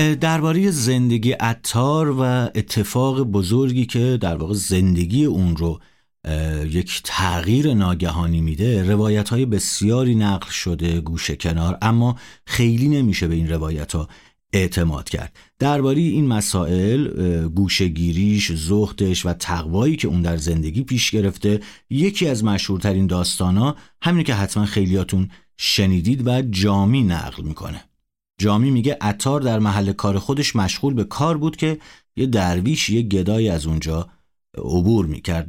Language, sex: Persian, male